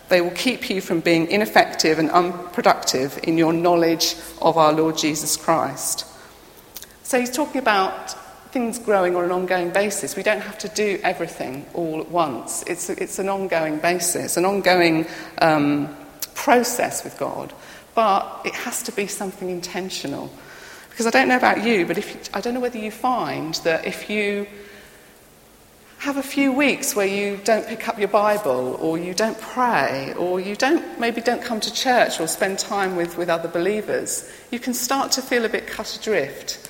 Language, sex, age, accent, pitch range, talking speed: English, female, 40-59, British, 175-230 Hz, 180 wpm